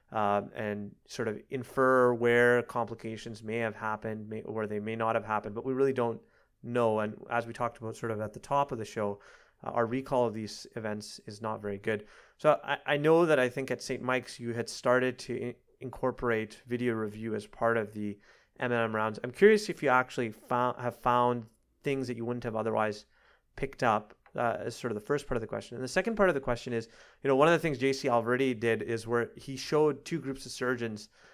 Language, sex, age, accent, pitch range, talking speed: English, male, 30-49, American, 110-130 Hz, 235 wpm